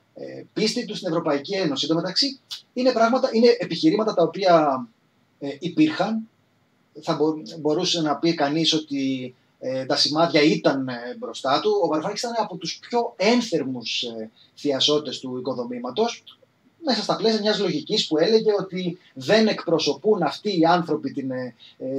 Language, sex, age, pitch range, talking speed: Greek, male, 30-49, 145-215 Hz, 145 wpm